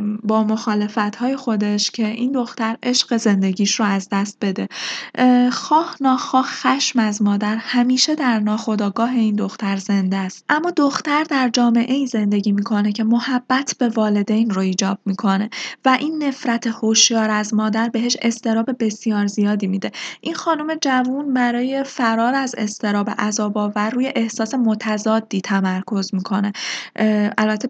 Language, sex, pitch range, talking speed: Persian, female, 205-245 Hz, 140 wpm